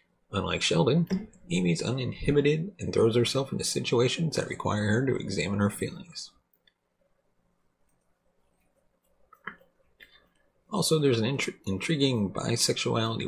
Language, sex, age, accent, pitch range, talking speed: English, male, 30-49, American, 110-155 Hz, 95 wpm